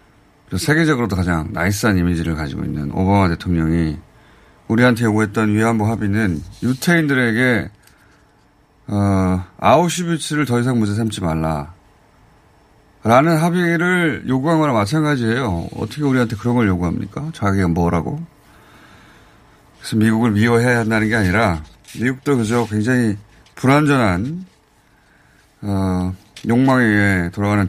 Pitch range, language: 95-125 Hz, Korean